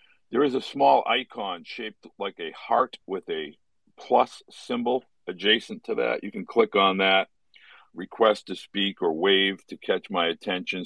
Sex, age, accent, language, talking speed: male, 50-69, American, English, 165 wpm